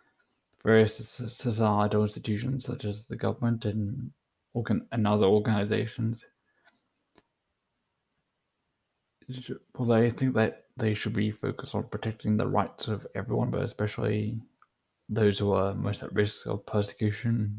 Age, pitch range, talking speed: 20-39, 105-115 Hz, 125 wpm